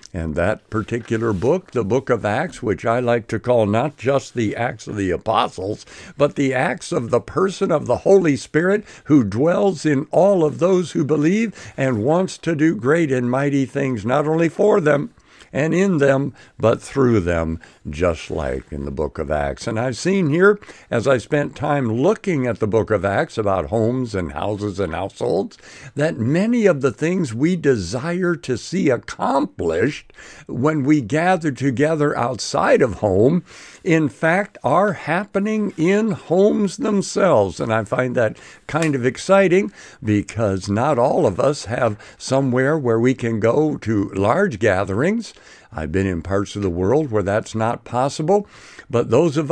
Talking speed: 170 wpm